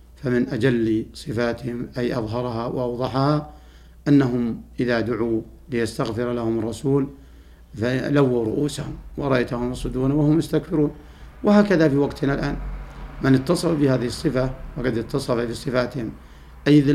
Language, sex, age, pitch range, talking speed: Arabic, male, 50-69, 110-140 Hz, 110 wpm